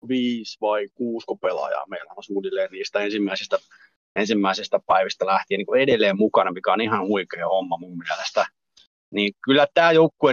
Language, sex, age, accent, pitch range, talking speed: Finnish, male, 30-49, native, 105-140 Hz, 150 wpm